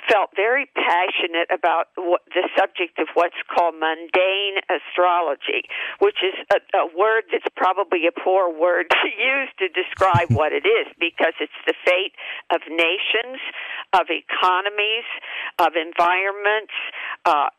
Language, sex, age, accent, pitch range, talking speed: English, female, 50-69, American, 175-220 Hz, 135 wpm